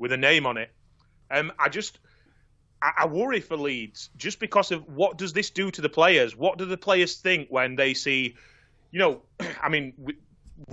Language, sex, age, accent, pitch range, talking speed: English, male, 30-49, British, 130-160 Hz, 200 wpm